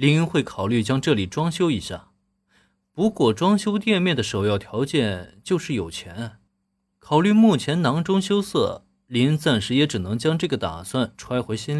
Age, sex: 20-39, male